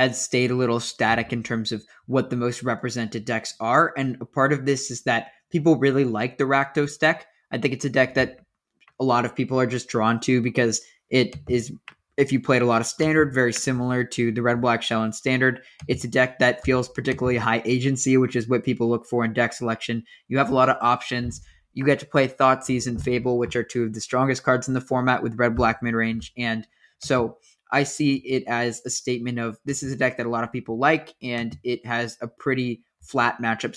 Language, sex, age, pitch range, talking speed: English, male, 20-39, 115-130 Hz, 230 wpm